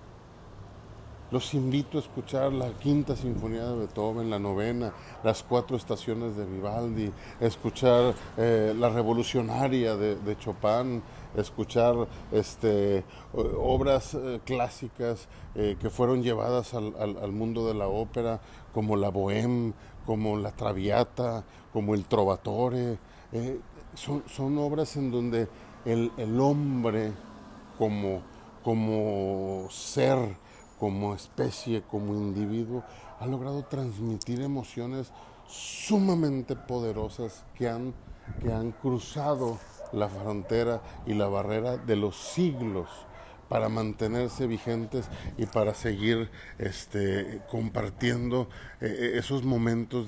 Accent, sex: Mexican, male